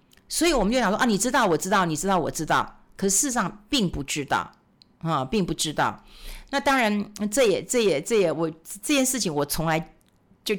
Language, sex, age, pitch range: Chinese, female, 50-69, 175-255 Hz